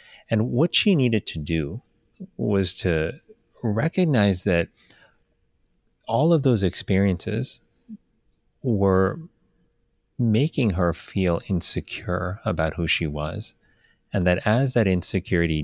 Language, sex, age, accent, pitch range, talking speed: English, male, 30-49, American, 85-105 Hz, 105 wpm